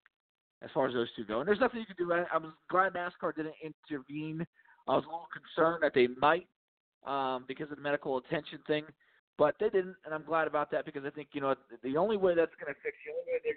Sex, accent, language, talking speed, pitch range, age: male, American, English, 250 wpm, 130-160 Hz, 40-59